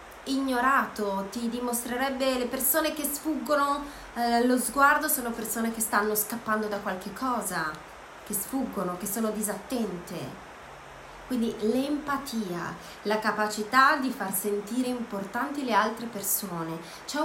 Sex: female